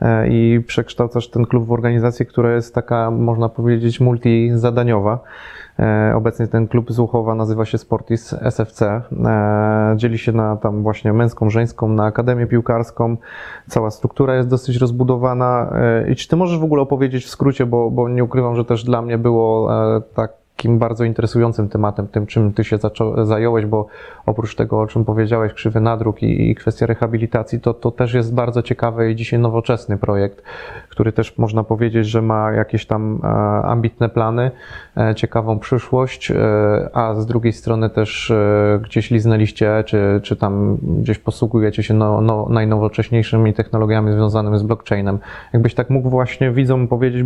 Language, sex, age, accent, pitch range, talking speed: Polish, male, 20-39, native, 110-120 Hz, 160 wpm